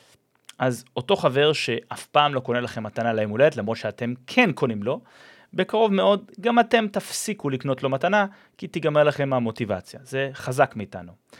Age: 30-49